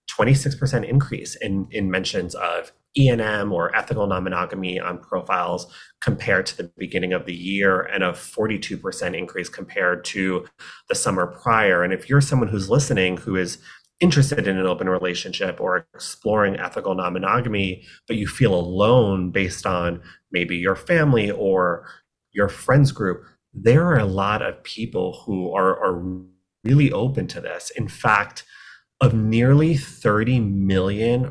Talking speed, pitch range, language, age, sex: 150 wpm, 95-130 Hz, English, 30-49, male